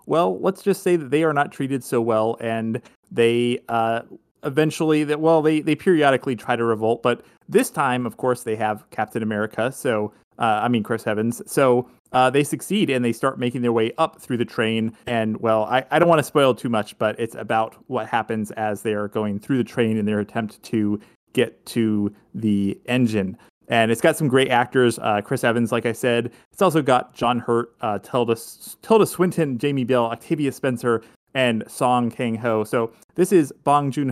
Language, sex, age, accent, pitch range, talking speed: English, male, 30-49, American, 115-145 Hz, 205 wpm